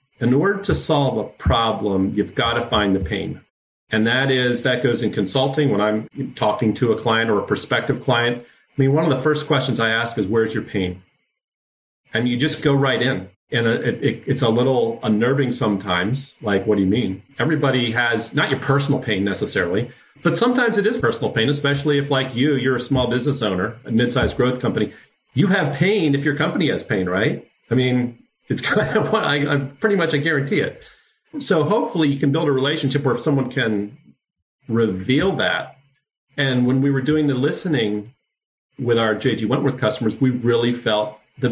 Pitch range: 115-145 Hz